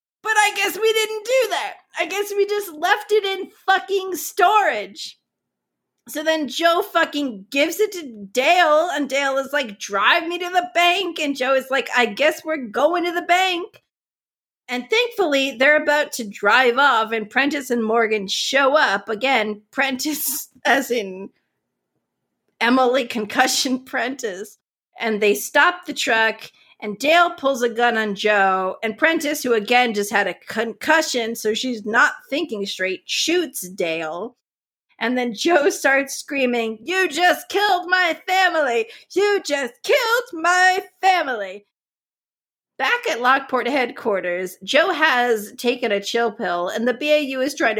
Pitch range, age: 225-345 Hz, 40-59